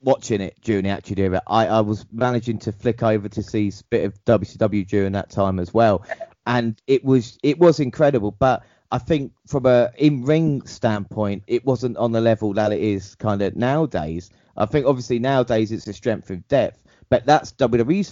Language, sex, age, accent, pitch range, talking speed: English, male, 30-49, British, 105-130 Hz, 200 wpm